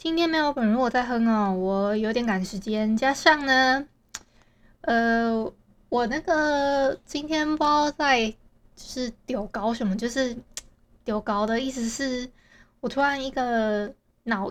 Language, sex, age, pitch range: Chinese, female, 20-39, 225-275 Hz